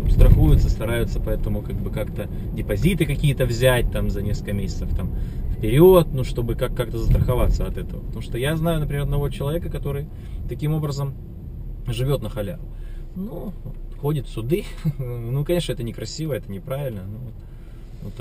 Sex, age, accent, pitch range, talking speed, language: male, 20-39, native, 105-135 Hz, 160 wpm, Russian